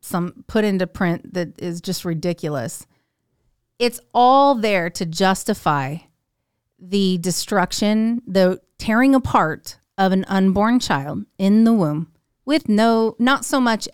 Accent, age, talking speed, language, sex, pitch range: American, 30-49, 130 wpm, English, female, 205-285 Hz